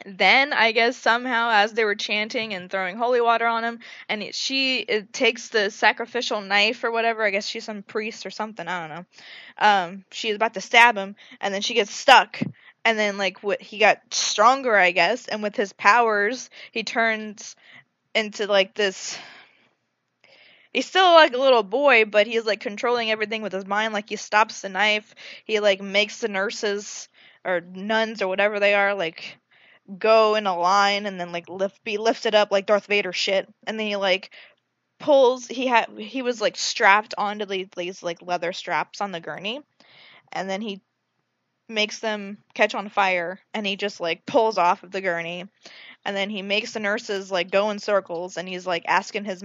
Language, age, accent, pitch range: English, 20-39, American, 195-225 Hz